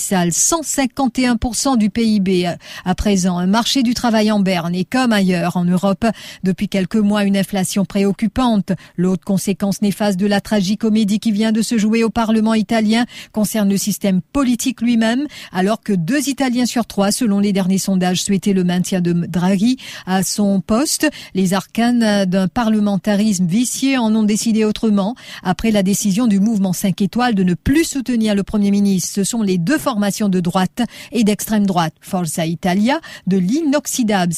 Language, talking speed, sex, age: English, 170 wpm, female, 40-59